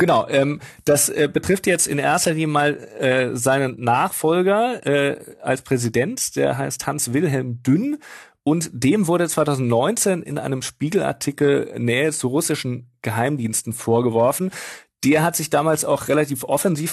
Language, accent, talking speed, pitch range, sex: German, German, 140 wpm, 120-155 Hz, male